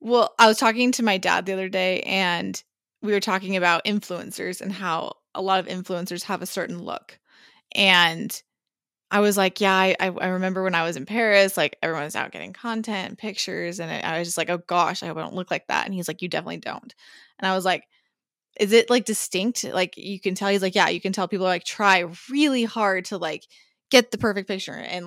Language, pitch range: English, 180-210 Hz